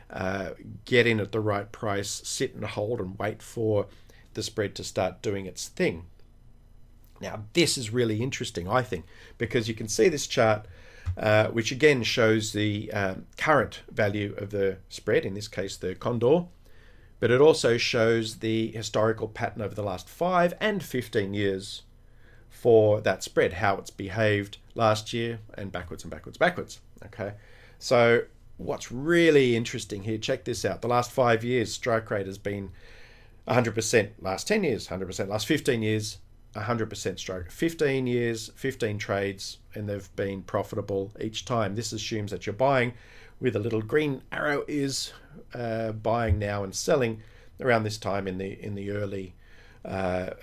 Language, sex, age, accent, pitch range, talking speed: English, male, 40-59, Australian, 100-120 Hz, 165 wpm